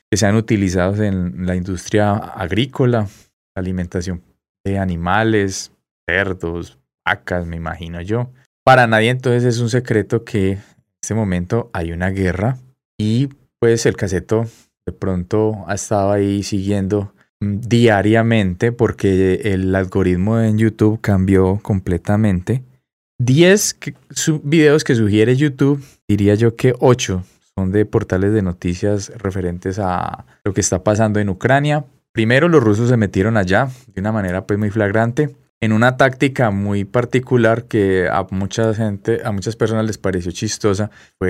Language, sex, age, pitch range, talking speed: Spanish, male, 20-39, 95-120 Hz, 140 wpm